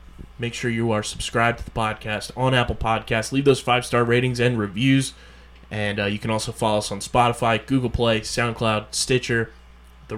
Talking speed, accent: 185 wpm, American